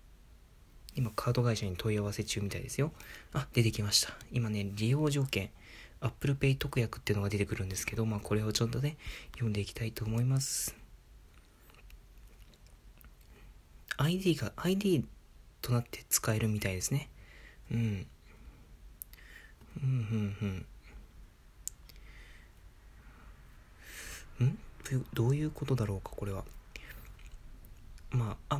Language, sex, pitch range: Japanese, male, 105-135 Hz